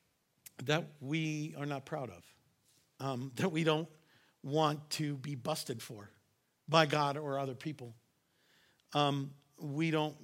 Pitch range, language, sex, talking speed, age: 145-175 Hz, English, male, 135 wpm, 50-69